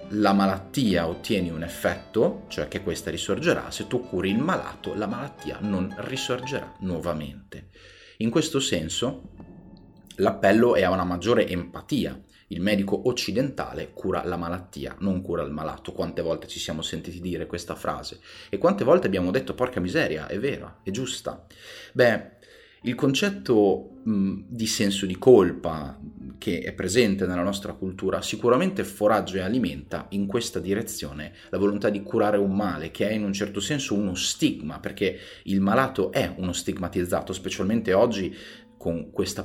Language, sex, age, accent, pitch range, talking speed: Italian, male, 30-49, native, 85-105 Hz, 155 wpm